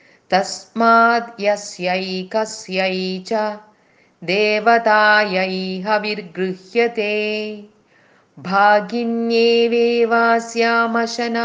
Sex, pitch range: female, 210-230 Hz